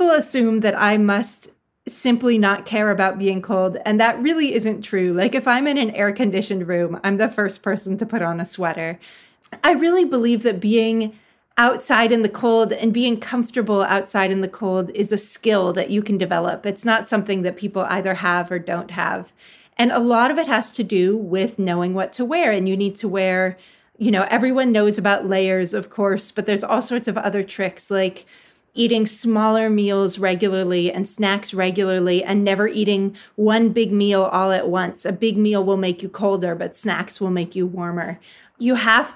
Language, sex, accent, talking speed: English, female, American, 200 wpm